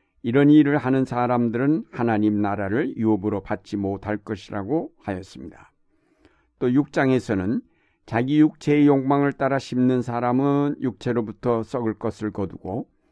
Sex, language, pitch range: male, Korean, 110-130 Hz